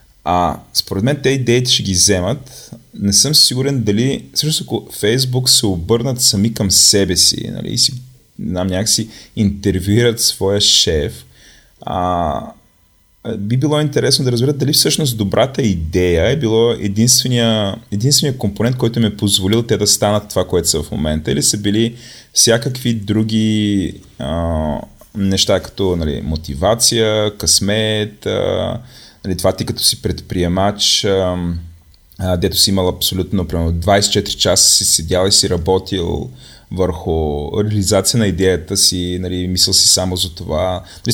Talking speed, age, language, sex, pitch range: 145 wpm, 30-49, Bulgarian, male, 90-115 Hz